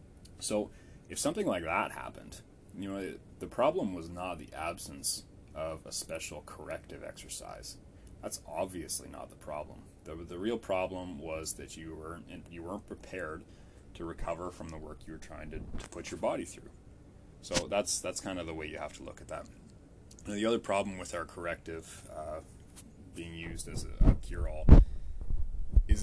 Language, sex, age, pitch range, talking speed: English, male, 30-49, 80-95 Hz, 175 wpm